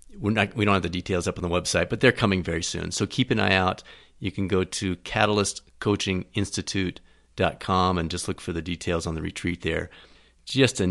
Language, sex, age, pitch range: English, male, 40-59, 85-115 Hz